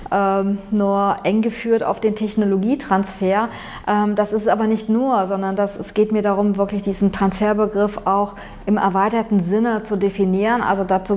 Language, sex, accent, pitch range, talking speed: German, female, German, 195-220 Hz, 160 wpm